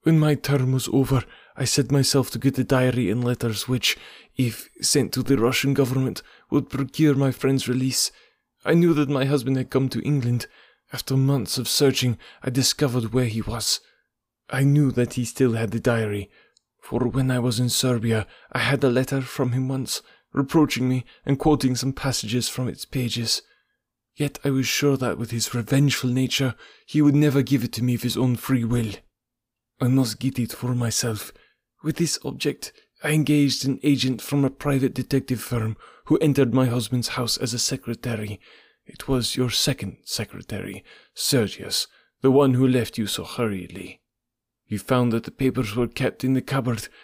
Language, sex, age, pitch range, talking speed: English, male, 20-39, 115-135 Hz, 185 wpm